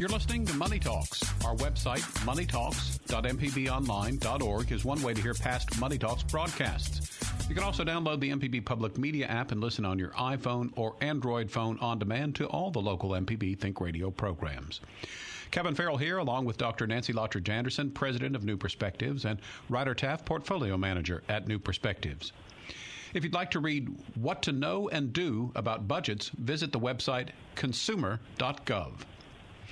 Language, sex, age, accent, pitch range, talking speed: English, male, 50-69, American, 105-135 Hz, 165 wpm